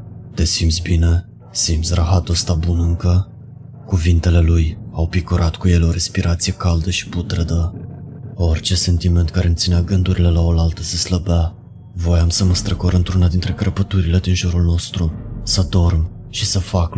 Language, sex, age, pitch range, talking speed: Romanian, male, 20-39, 85-100 Hz, 150 wpm